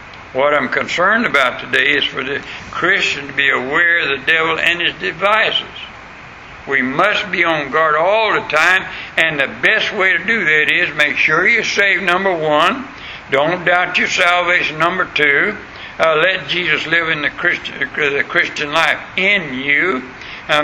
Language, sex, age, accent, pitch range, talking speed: English, male, 60-79, American, 150-190 Hz, 170 wpm